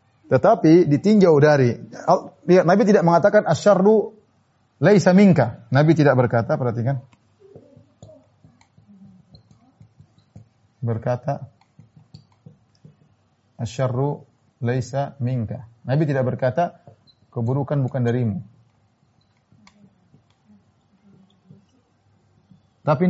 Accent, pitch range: native, 130-180 Hz